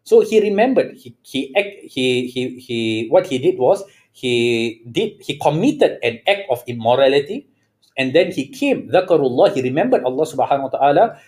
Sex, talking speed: male, 165 wpm